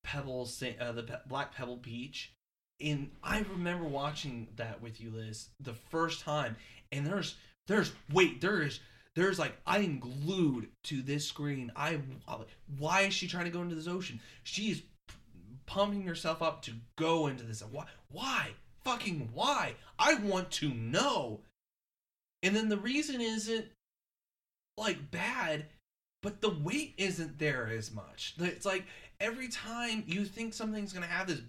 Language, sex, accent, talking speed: English, male, American, 150 wpm